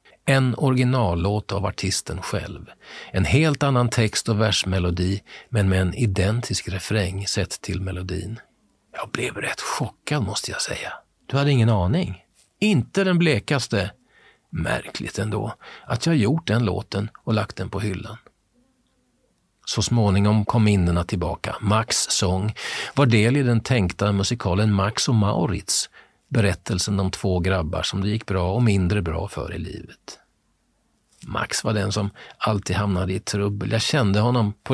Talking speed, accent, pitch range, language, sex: 150 wpm, native, 95-115 Hz, Swedish, male